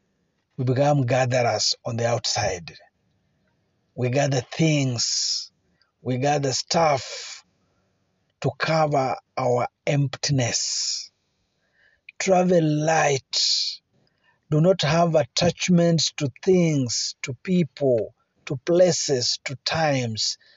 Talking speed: 90 wpm